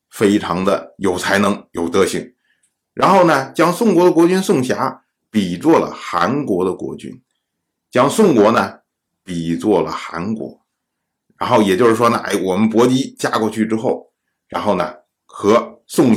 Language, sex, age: Chinese, male, 50-69